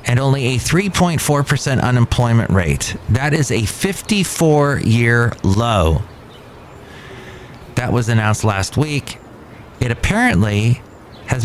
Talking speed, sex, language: 105 wpm, male, English